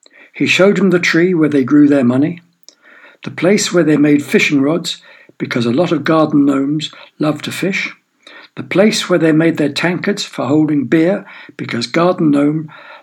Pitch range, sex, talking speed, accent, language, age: 145-185 Hz, male, 180 wpm, British, English, 60-79